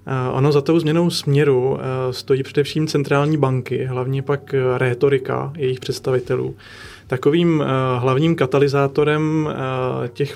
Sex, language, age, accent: male, Czech, 20-39, native